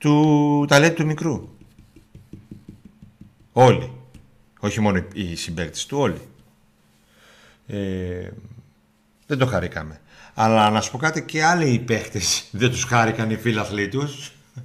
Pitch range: 100-140 Hz